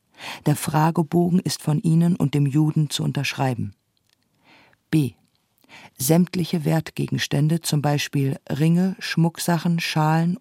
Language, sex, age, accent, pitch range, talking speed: German, female, 50-69, German, 145-170 Hz, 105 wpm